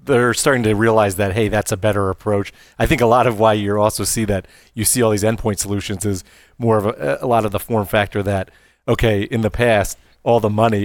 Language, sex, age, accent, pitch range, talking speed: English, male, 30-49, American, 100-115 Hz, 245 wpm